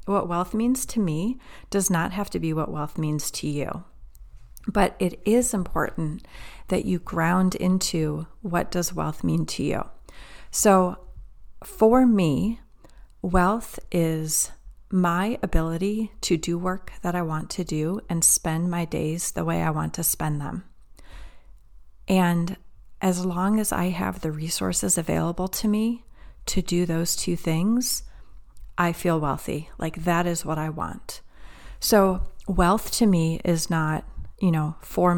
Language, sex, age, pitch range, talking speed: English, female, 30-49, 155-185 Hz, 150 wpm